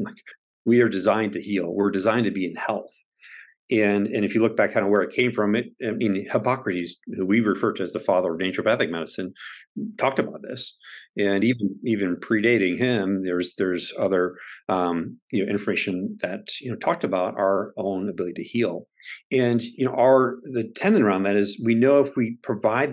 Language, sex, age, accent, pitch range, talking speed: English, male, 50-69, American, 100-120 Hz, 200 wpm